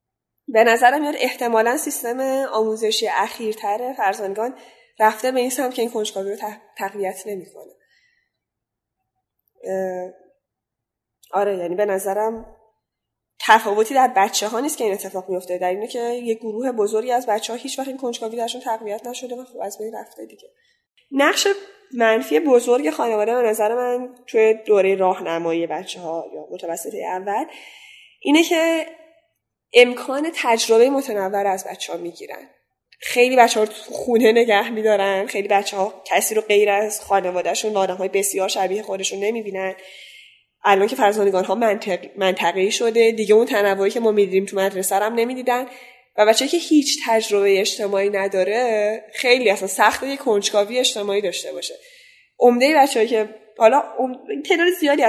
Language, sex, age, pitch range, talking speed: Persian, female, 10-29, 200-255 Hz, 150 wpm